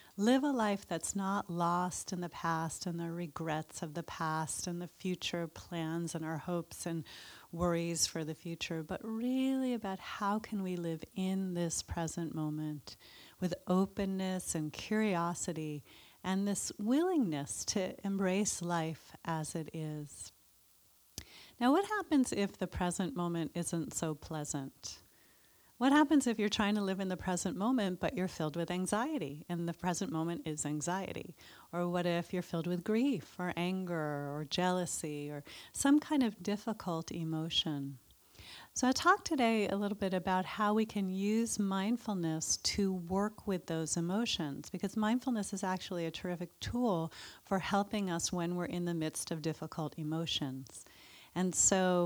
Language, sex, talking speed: English, female, 160 wpm